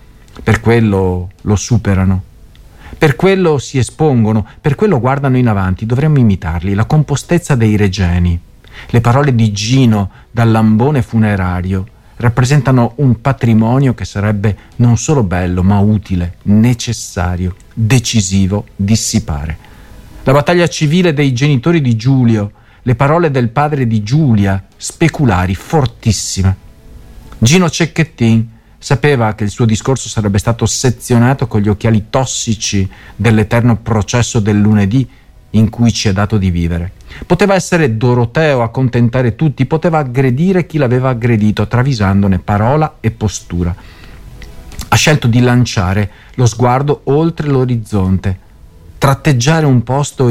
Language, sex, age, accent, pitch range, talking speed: Italian, male, 40-59, native, 100-135 Hz, 125 wpm